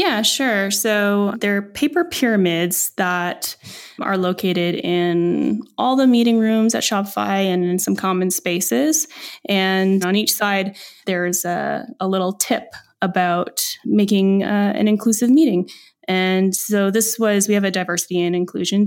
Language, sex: English, female